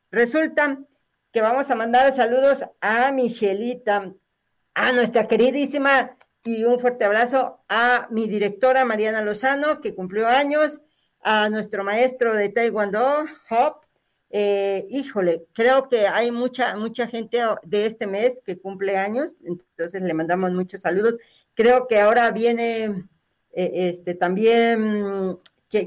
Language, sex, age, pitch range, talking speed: Spanish, female, 40-59, 195-250 Hz, 130 wpm